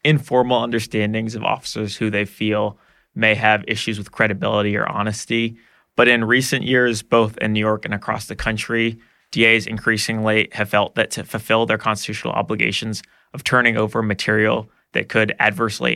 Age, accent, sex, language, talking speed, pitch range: 20-39, American, male, English, 160 wpm, 105-115 Hz